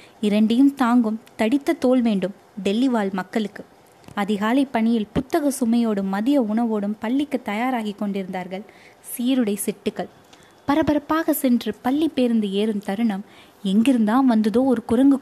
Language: Tamil